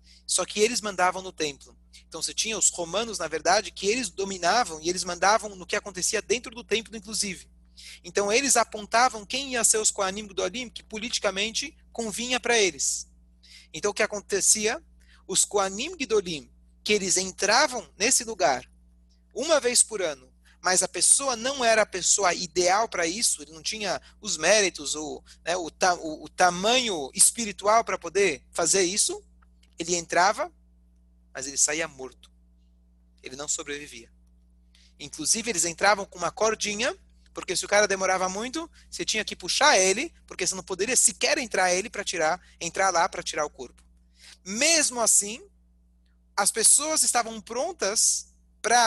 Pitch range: 130-215 Hz